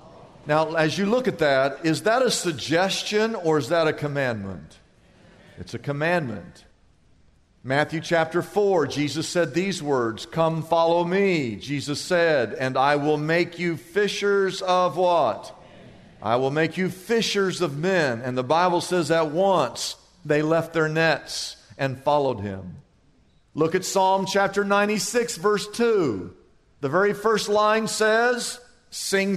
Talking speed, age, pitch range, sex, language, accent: 145 wpm, 50-69, 165-245 Hz, male, English, American